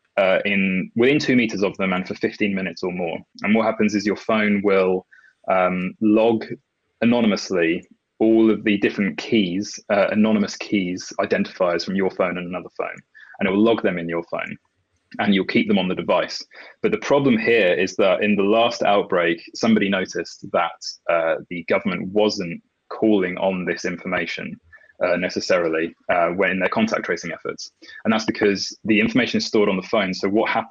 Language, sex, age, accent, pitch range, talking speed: English, male, 20-39, British, 90-110 Hz, 185 wpm